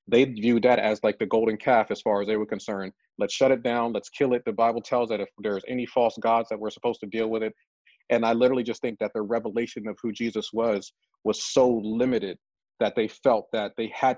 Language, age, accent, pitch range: English, 40-59, American, 110-130 Hz